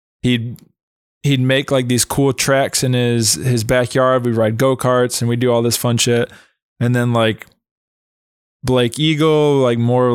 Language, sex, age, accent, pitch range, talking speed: English, male, 20-39, American, 115-130 Hz, 165 wpm